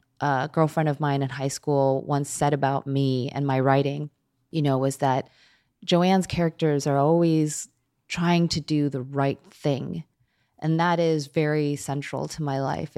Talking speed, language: 165 wpm, English